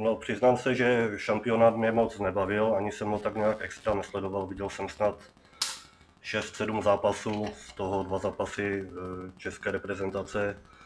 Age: 30-49